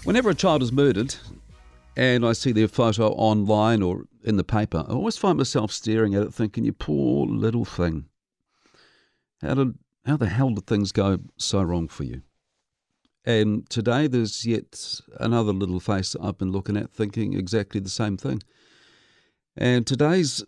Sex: male